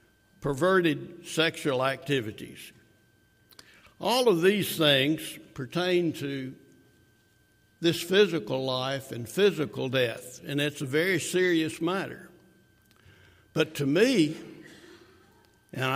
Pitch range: 130-170 Hz